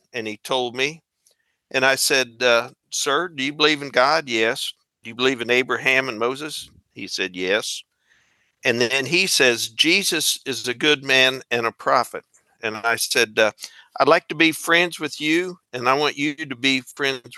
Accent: American